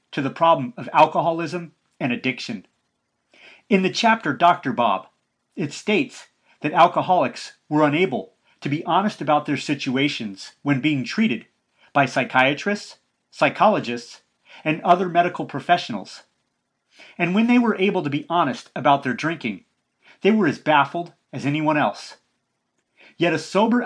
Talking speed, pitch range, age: 140 wpm, 145-195 Hz, 30-49